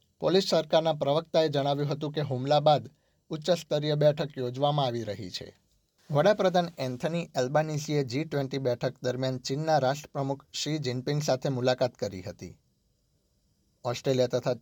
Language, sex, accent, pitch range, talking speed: Gujarati, male, native, 130-150 Hz, 120 wpm